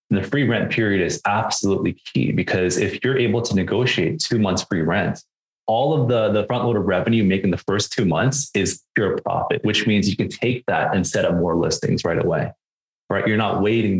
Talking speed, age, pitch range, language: 220 wpm, 20-39, 90-110 Hz, English